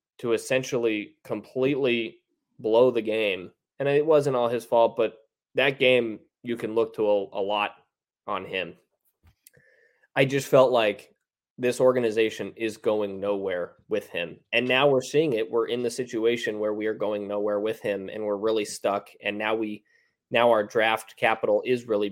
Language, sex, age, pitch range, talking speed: English, male, 20-39, 105-130 Hz, 170 wpm